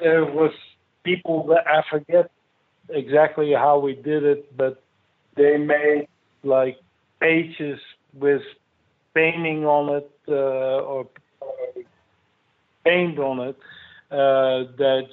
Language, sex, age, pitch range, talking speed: English, male, 50-69, 130-155 Hz, 105 wpm